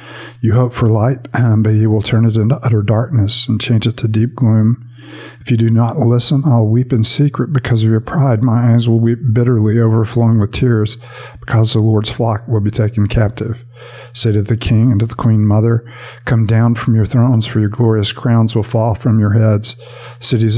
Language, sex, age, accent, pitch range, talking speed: English, male, 50-69, American, 110-120 Hz, 205 wpm